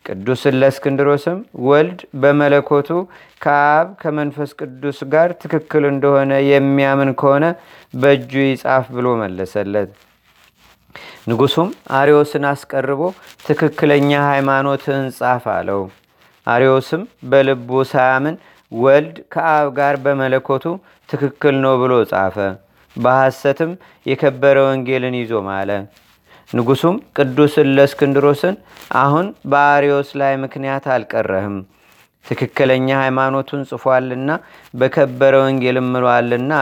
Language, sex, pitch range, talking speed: Amharic, male, 130-145 Hz, 85 wpm